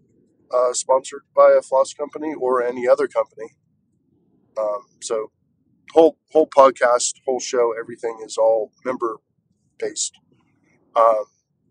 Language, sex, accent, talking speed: English, male, American, 120 wpm